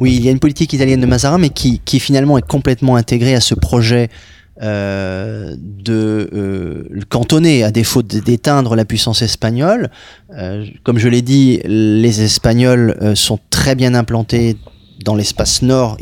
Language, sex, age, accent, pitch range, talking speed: French, male, 30-49, French, 105-130 Hz, 165 wpm